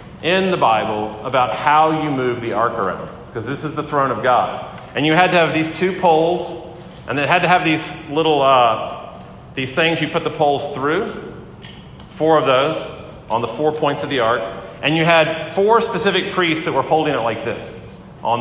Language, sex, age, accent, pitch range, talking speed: English, male, 40-59, American, 130-165 Hz, 205 wpm